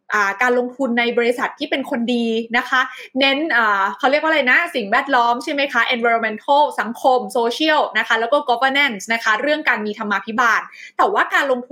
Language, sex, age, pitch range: Thai, female, 20-39, 225-300 Hz